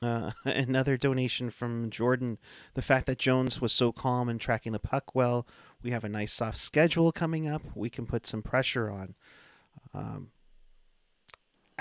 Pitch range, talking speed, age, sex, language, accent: 115-135 Hz, 165 wpm, 30-49, male, English, American